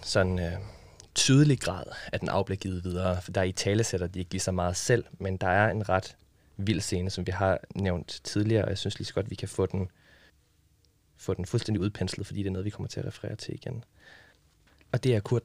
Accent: native